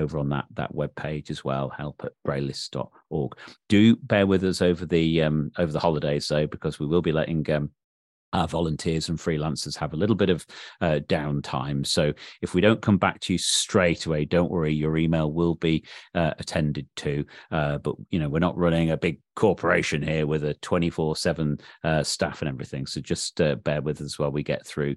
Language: English